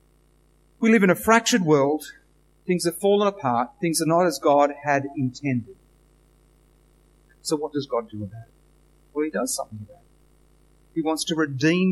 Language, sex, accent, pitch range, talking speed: English, male, Australian, 135-190 Hz, 170 wpm